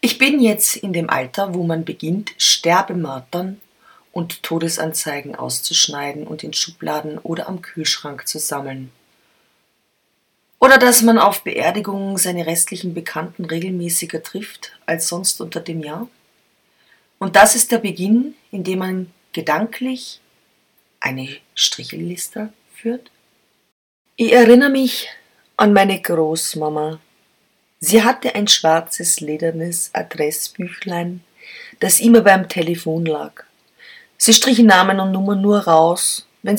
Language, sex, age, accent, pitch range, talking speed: German, female, 30-49, German, 160-200 Hz, 120 wpm